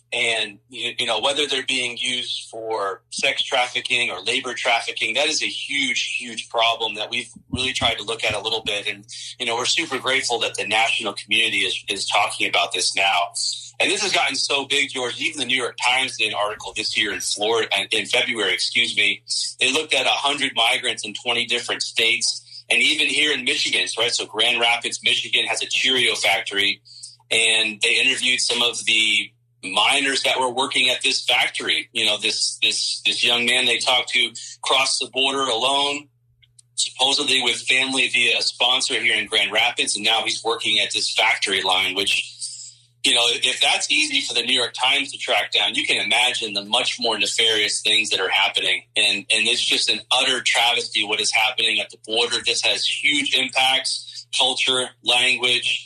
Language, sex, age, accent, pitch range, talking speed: English, male, 30-49, American, 115-130 Hz, 195 wpm